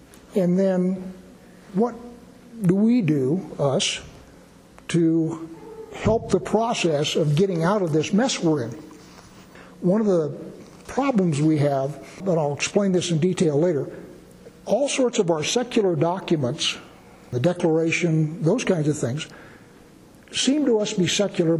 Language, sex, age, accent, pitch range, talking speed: English, male, 60-79, American, 155-200 Hz, 140 wpm